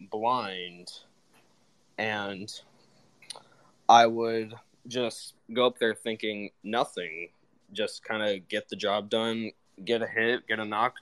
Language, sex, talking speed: English, male, 125 wpm